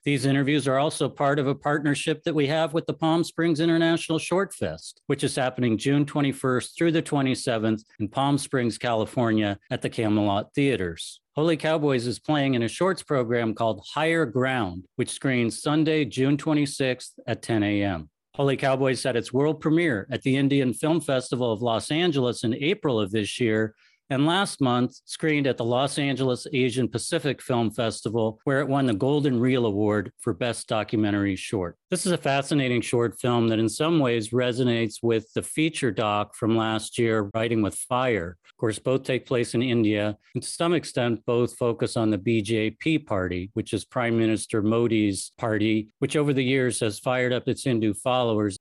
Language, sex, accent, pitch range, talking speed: English, male, American, 110-140 Hz, 185 wpm